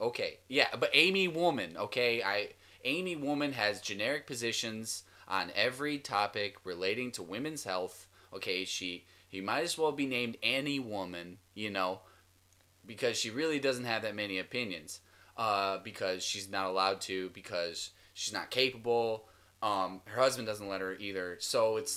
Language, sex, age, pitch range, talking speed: English, male, 20-39, 95-125 Hz, 160 wpm